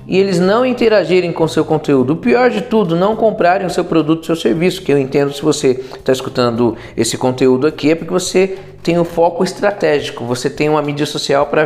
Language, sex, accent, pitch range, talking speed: Portuguese, male, Brazilian, 130-175 Hz, 215 wpm